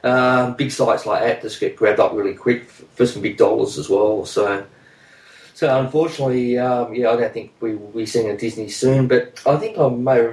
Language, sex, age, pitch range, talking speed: English, male, 20-39, 105-125 Hz, 215 wpm